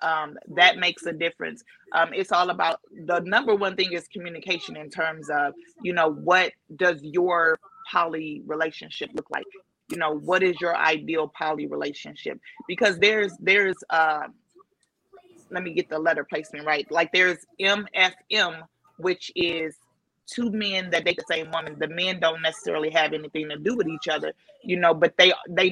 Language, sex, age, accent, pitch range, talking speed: English, female, 30-49, American, 160-185 Hz, 175 wpm